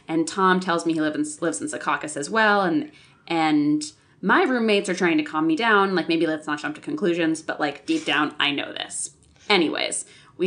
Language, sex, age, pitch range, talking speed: English, female, 20-39, 160-225 Hz, 205 wpm